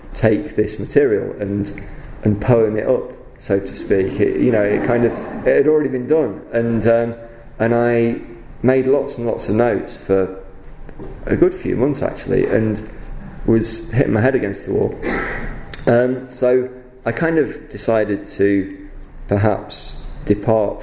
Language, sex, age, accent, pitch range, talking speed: English, male, 30-49, British, 100-125 Hz, 160 wpm